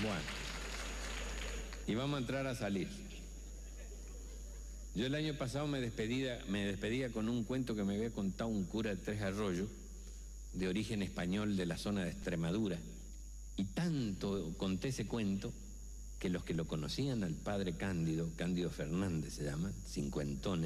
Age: 60-79